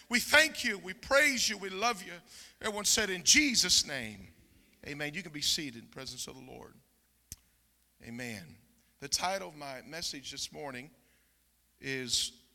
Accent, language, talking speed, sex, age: American, English, 165 wpm, male, 40-59